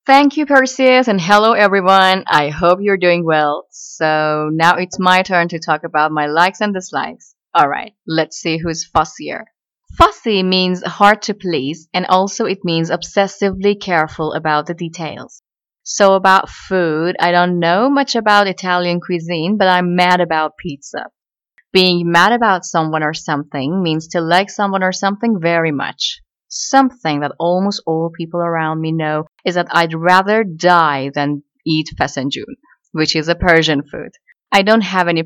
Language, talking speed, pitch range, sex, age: Persian, 165 wpm, 160-205 Hz, female, 30-49